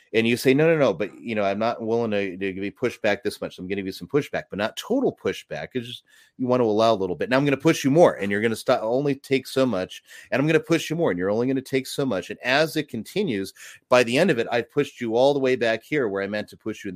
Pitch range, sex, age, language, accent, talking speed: 100-130 Hz, male, 30-49, English, American, 335 wpm